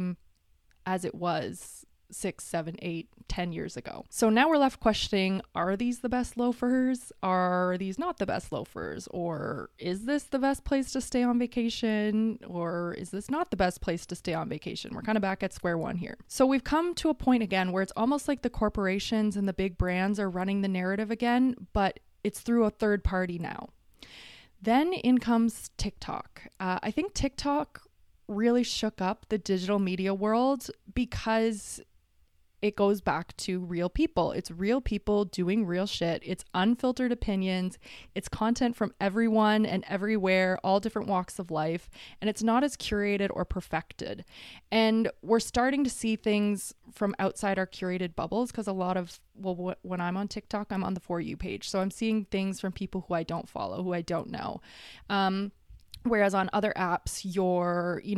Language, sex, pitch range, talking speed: English, female, 185-230 Hz, 185 wpm